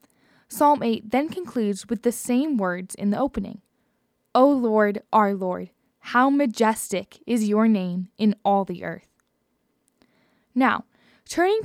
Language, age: English, 10-29